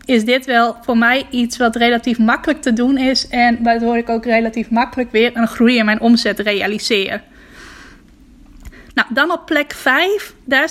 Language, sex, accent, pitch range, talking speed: Dutch, female, Dutch, 230-270 Hz, 175 wpm